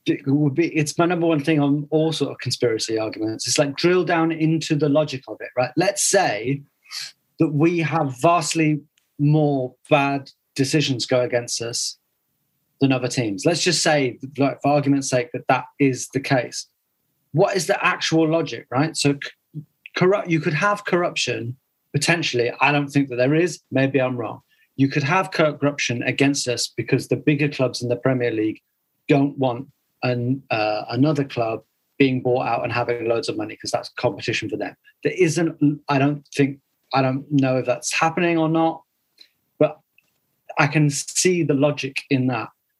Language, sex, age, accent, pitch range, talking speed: English, male, 30-49, British, 130-165 Hz, 180 wpm